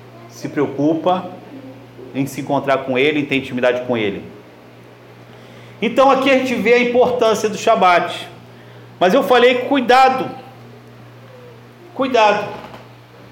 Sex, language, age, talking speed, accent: male, Portuguese, 50-69, 115 wpm, Brazilian